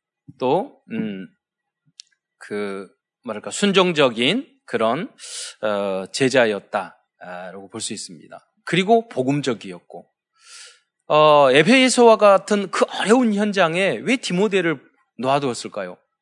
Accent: native